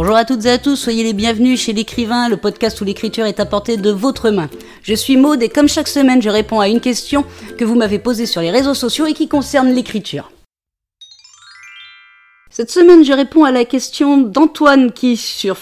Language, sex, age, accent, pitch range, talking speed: French, female, 40-59, French, 205-270 Hz, 210 wpm